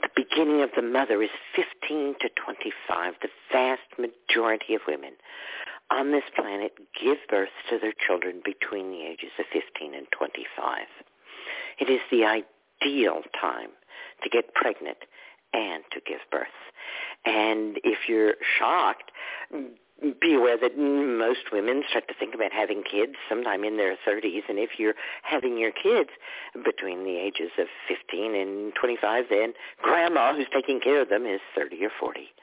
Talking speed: 155 wpm